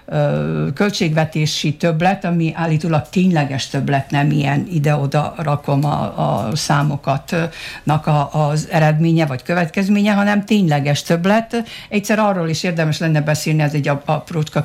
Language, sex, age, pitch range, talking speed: Hungarian, female, 60-79, 145-195 Hz, 120 wpm